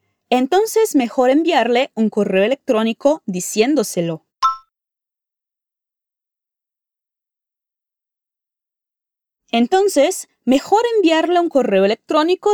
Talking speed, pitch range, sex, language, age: 60 wpm, 215-320 Hz, female, Portuguese, 20-39